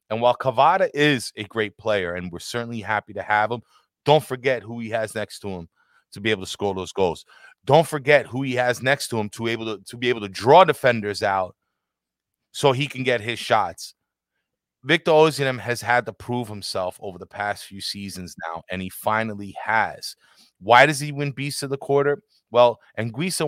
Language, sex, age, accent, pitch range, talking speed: English, male, 30-49, American, 100-135 Hz, 200 wpm